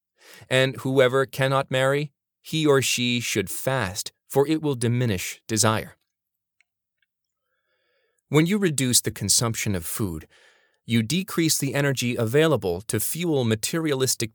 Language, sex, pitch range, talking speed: English, male, 100-135 Hz, 120 wpm